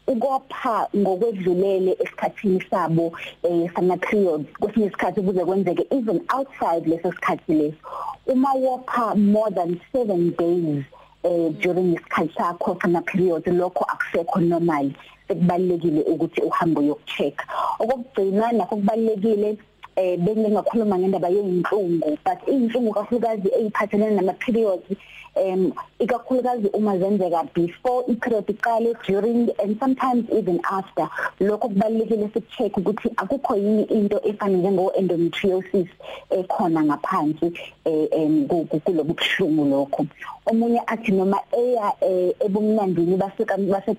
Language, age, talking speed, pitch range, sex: English, 30-49, 85 wpm, 180-225 Hz, female